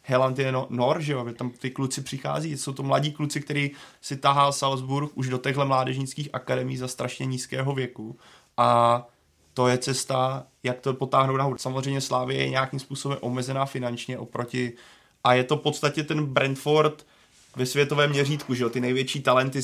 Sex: male